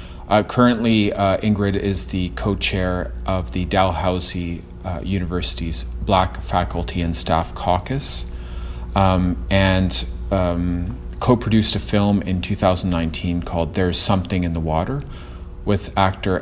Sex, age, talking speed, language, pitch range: male, 30-49, 120 wpm, English, 80-95 Hz